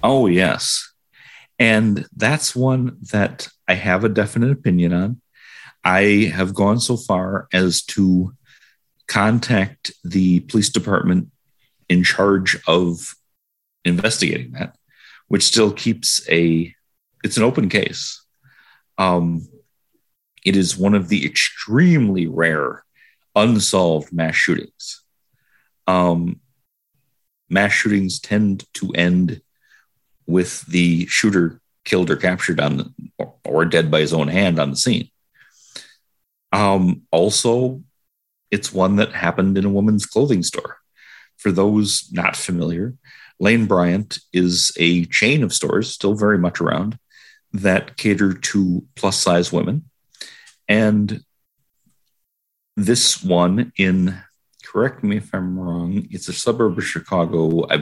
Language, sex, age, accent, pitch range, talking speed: English, male, 40-59, American, 90-110 Hz, 120 wpm